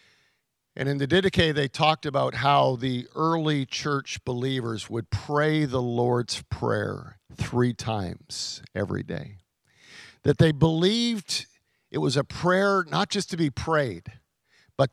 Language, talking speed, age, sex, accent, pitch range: English, 135 wpm, 50-69, male, American, 135-185 Hz